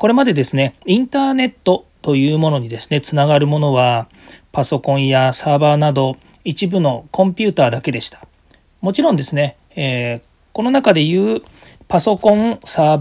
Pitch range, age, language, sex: 125-185 Hz, 40-59, Japanese, male